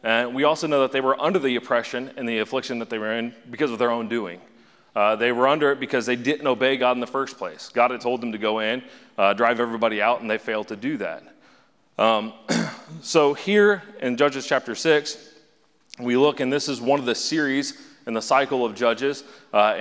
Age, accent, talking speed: 30-49, American, 225 wpm